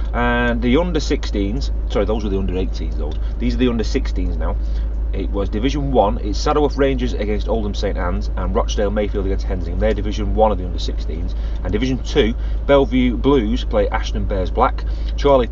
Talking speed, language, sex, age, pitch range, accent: 180 wpm, English, male, 30-49, 90-140 Hz, British